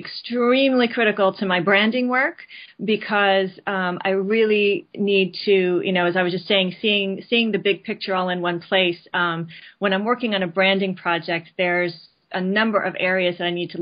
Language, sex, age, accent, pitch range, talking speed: English, female, 30-49, American, 180-205 Hz, 195 wpm